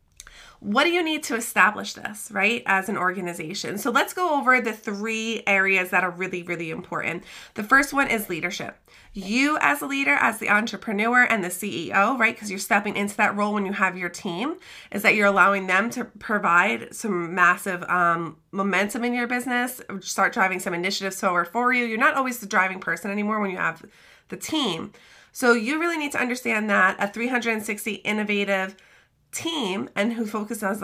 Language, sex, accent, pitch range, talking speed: English, female, American, 185-230 Hz, 185 wpm